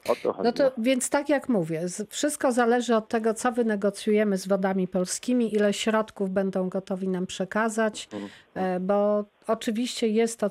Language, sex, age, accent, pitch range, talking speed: Polish, female, 40-59, native, 190-225 Hz, 145 wpm